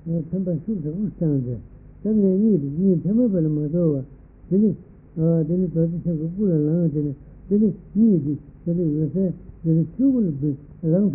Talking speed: 90 wpm